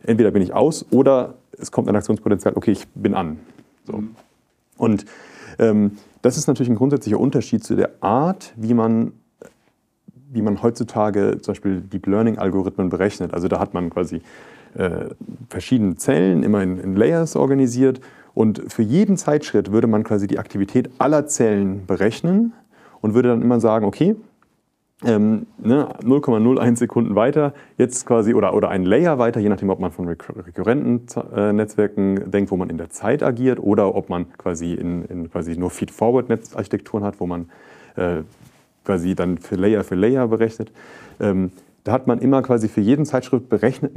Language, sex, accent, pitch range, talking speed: German, male, German, 100-125 Hz, 165 wpm